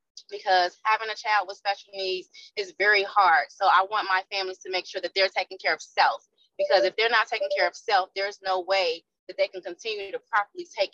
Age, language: 20-39, English